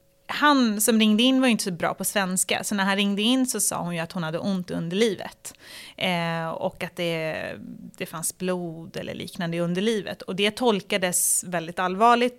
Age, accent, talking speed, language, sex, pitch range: 30-49, native, 195 wpm, Swedish, female, 185-225 Hz